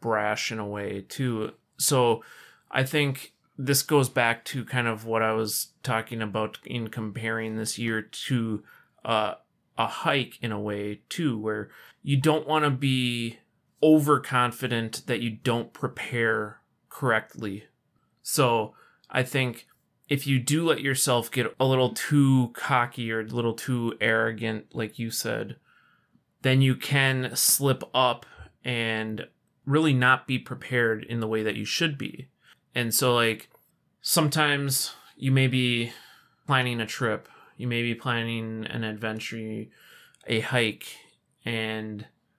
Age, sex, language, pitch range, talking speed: 30-49, male, English, 110-130 Hz, 140 wpm